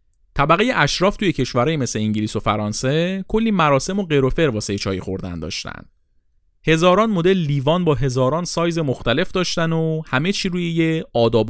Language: Persian